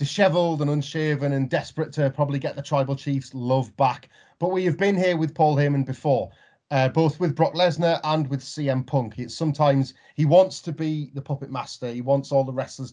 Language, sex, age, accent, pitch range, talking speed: English, male, 30-49, British, 130-150 Hz, 205 wpm